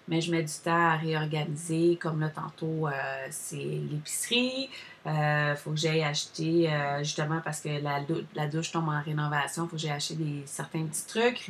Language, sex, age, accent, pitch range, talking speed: French, female, 30-49, Canadian, 160-190 Hz, 205 wpm